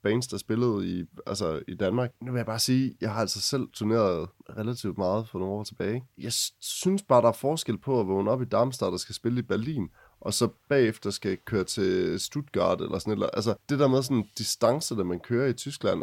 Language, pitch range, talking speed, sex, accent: Danish, 100-125 Hz, 235 wpm, male, native